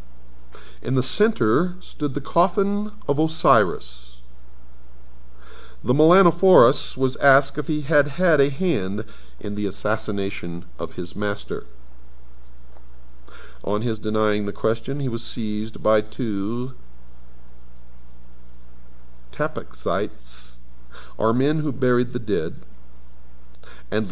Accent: American